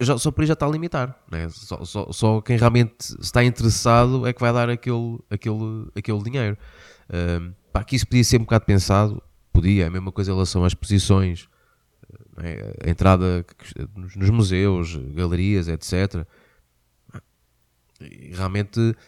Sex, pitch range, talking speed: male, 90-115 Hz, 155 wpm